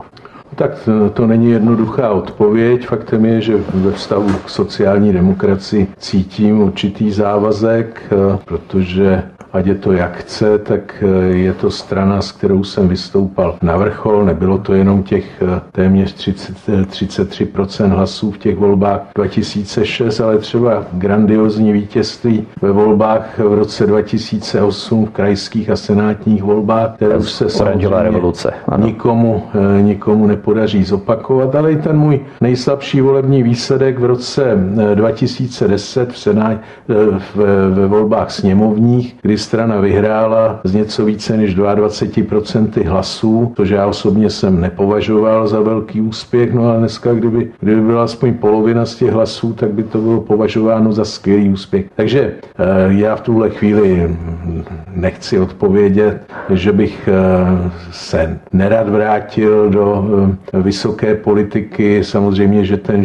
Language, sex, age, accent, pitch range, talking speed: Czech, male, 50-69, native, 100-115 Hz, 130 wpm